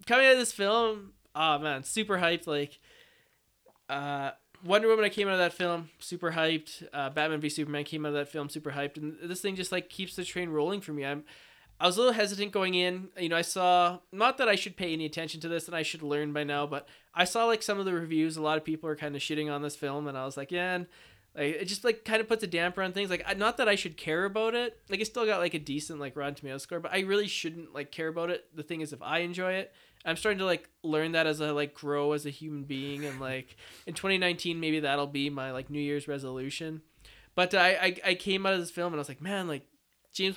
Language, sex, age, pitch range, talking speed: English, male, 20-39, 150-185 Hz, 270 wpm